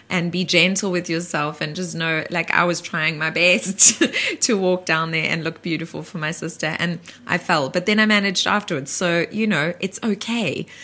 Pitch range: 150-175 Hz